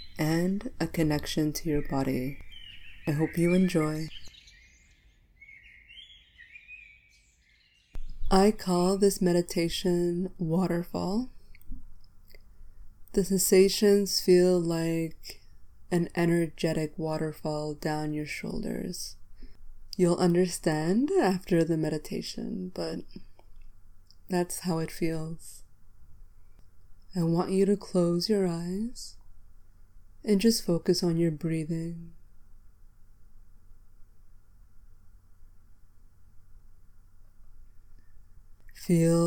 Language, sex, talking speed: English, female, 75 wpm